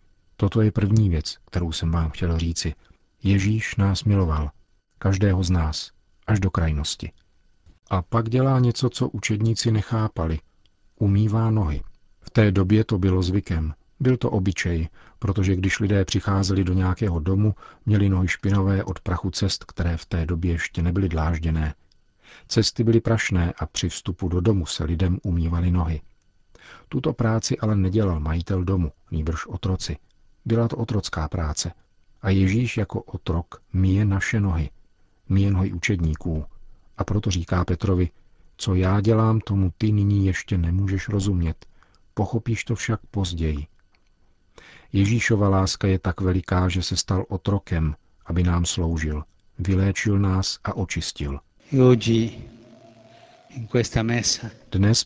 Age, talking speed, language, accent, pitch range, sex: 50-69, 135 wpm, Czech, native, 85-105 Hz, male